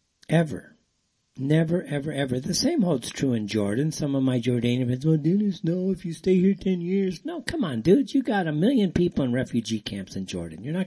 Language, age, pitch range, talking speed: English, 50-69, 115-175 Hz, 215 wpm